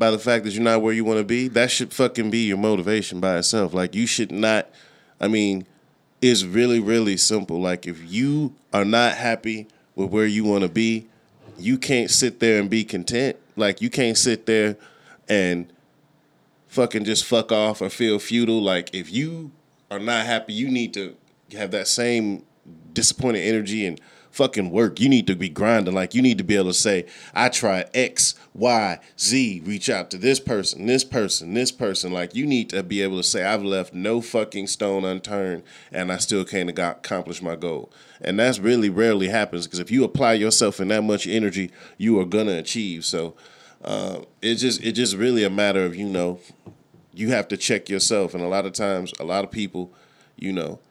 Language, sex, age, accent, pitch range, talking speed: English, male, 20-39, American, 95-115 Hz, 205 wpm